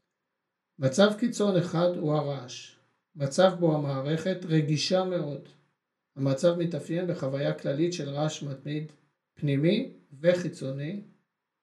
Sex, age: male, 50-69